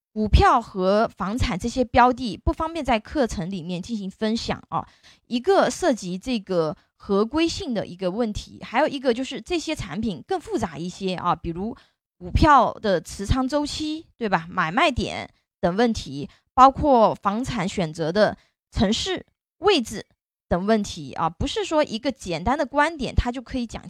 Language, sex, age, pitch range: Chinese, female, 20-39, 200-280 Hz